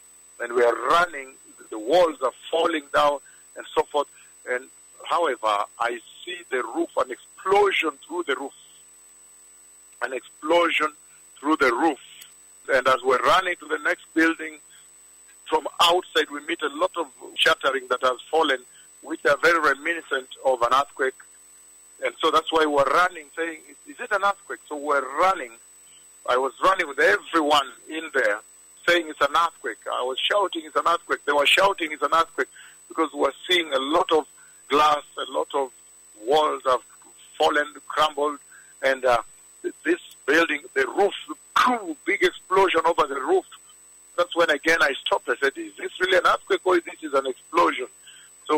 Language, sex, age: English, male, 50-69